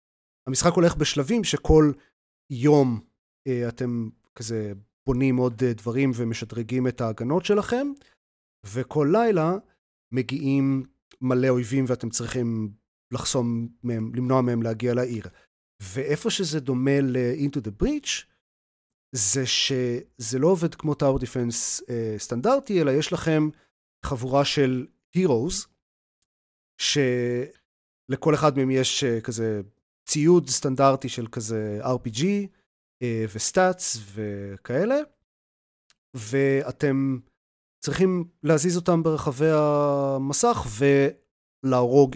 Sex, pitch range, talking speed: male, 115-155 Hz, 100 wpm